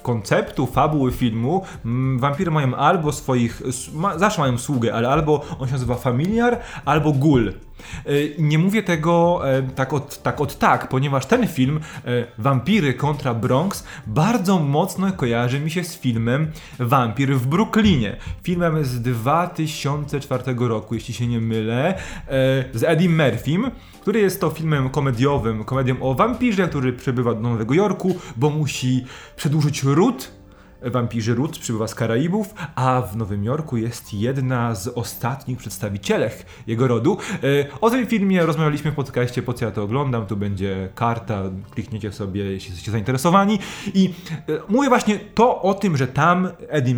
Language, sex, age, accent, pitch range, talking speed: Polish, male, 20-39, native, 120-170 Hz, 145 wpm